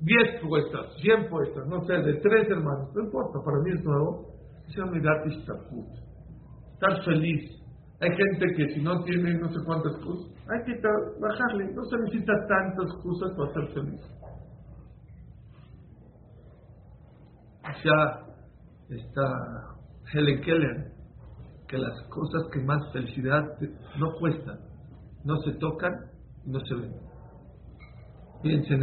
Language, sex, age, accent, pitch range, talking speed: English, male, 50-69, Mexican, 150-195 Hz, 135 wpm